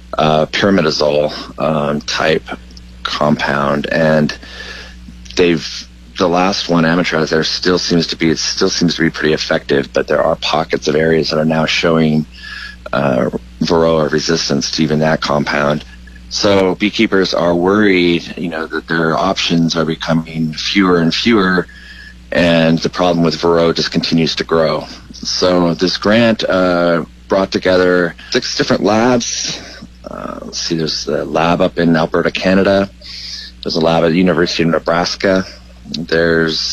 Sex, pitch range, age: male, 75-90 Hz, 30-49